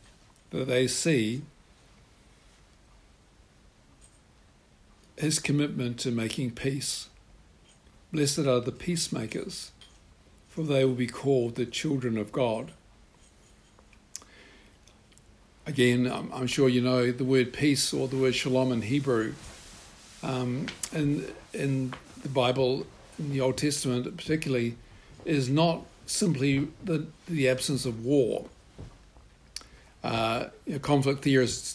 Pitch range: 120-145 Hz